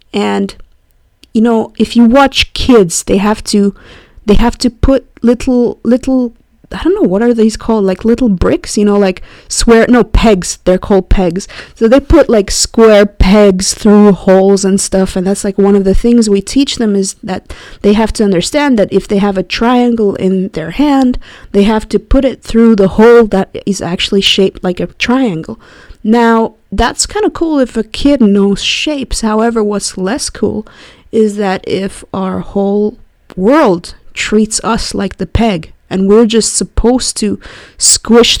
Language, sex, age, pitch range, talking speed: English, female, 20-39, 195-235 Hz, 180 wpm